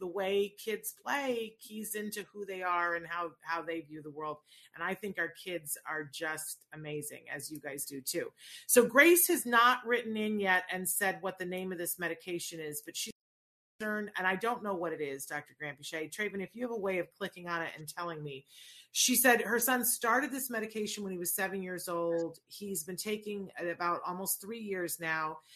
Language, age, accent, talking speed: English, 40-59, American, 215 wpm